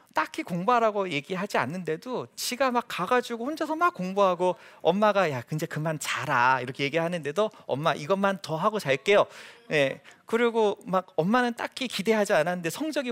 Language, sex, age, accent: Korean, male, 40-59, native